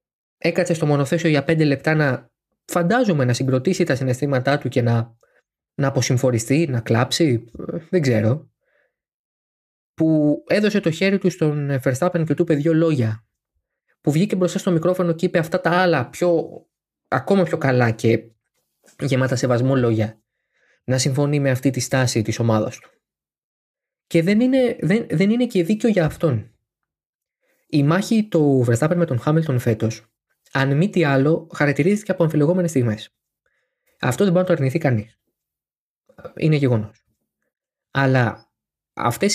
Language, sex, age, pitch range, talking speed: Greek, male, 20-39, 125-175 Hz, 150 wpm